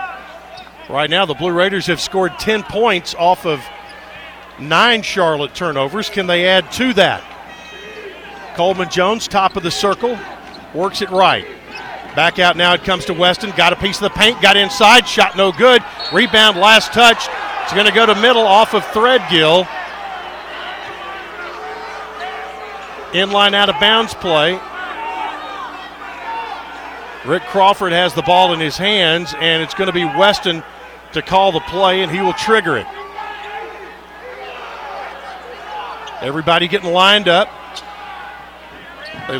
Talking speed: 135 wpm